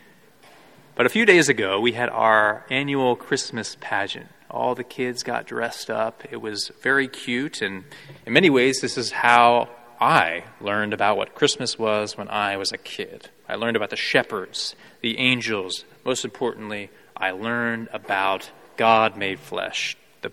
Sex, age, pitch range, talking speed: male, 30-49, 115-140 Hz, 160 wpm